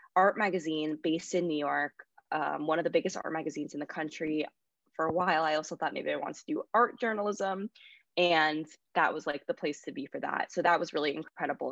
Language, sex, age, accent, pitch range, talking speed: English, female, 20-39, American, 155-195 Hz, 225 wpm